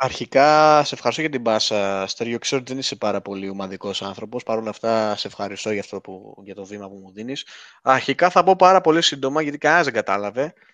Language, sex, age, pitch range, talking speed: Greek, male, 20-39, 110-140 Hz, 205 wpm